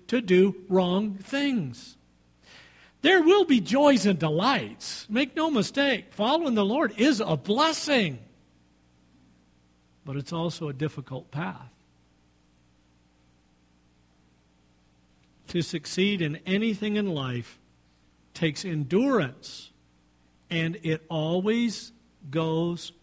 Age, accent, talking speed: 50-69, American, 95 wpm